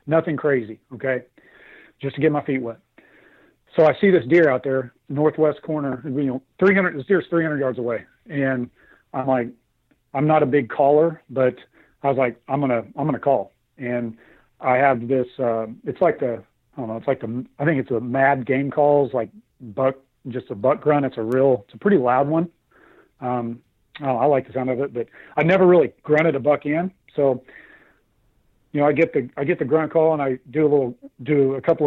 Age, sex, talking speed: 40-59, male, 215 wpm